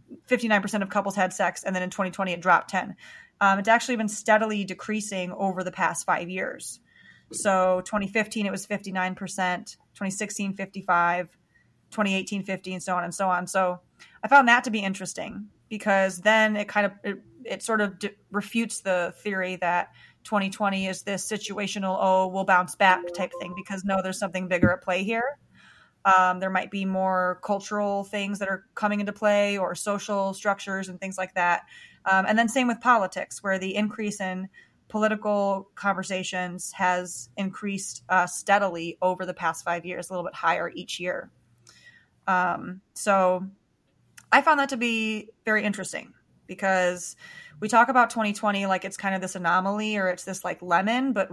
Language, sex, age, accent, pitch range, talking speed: English, female, 30-49, American, 185-210 Hz, 170 wpm